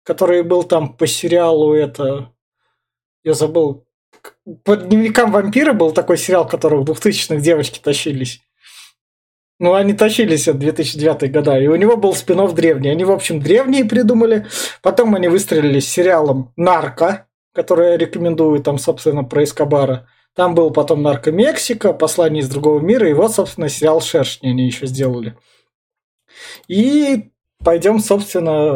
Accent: native